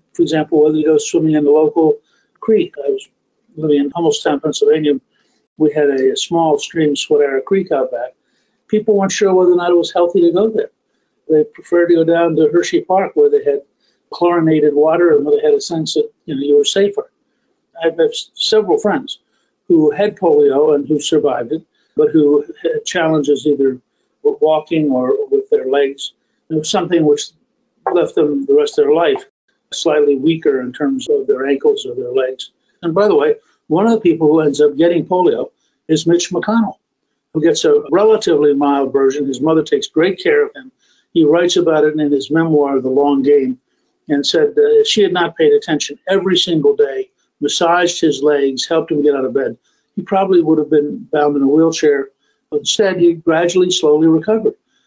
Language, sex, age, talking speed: English, male, 50-69, 195 wpm